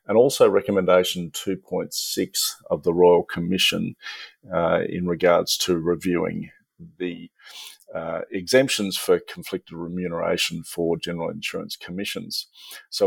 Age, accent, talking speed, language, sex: 50-69, Australian, 110 wpm, English, male